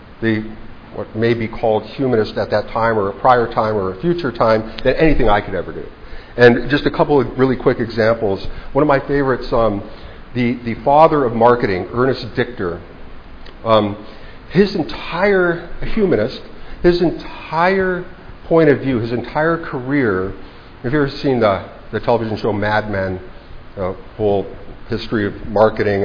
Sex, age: male, 50-69